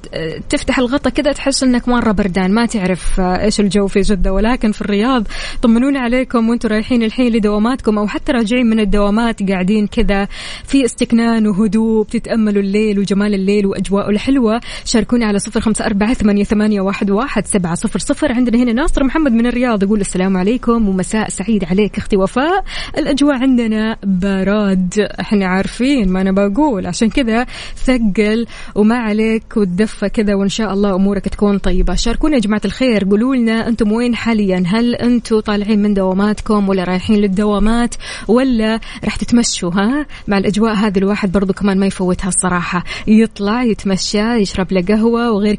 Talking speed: 145 wpm